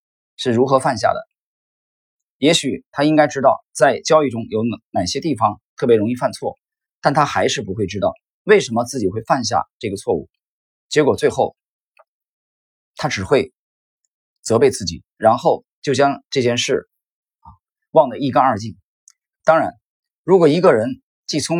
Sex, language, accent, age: male, Chinese, native, 30-49